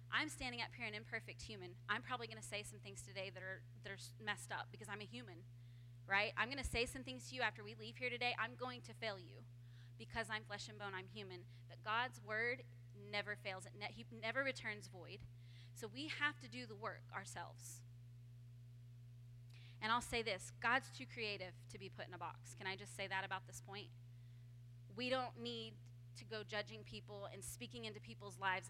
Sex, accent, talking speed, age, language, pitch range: female, American, 210 wpm, 20-39, English, 120-125 Hz